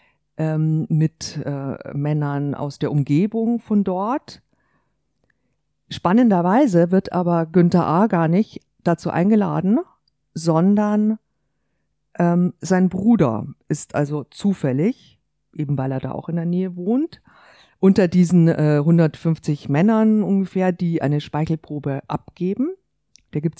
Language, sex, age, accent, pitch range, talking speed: German, female, 50-69, German, 150-185 Hz, 115 wpm